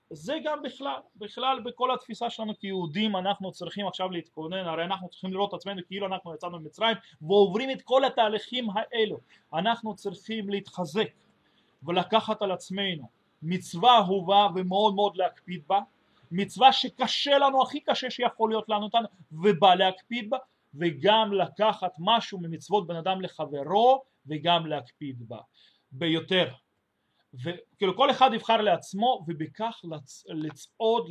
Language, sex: Russian, male